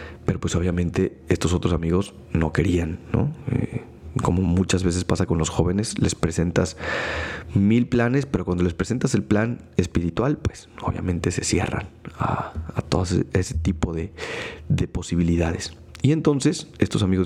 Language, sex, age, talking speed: Spanish, male, 40-59, 160 wpm